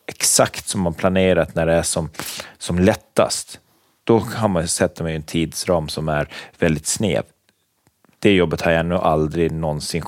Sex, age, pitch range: male, 30-49, 85-110 Hz